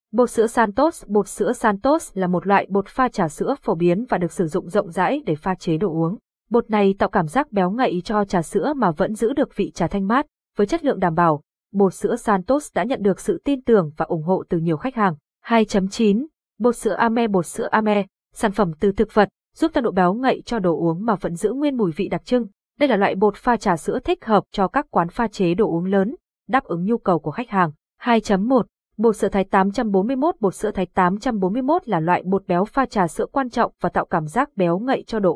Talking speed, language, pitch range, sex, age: 245 wpm, Vietnamese, 180-235 Hz, female, 20-39